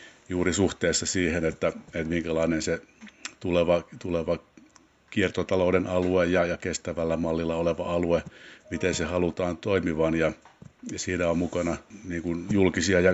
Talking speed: 130 wpm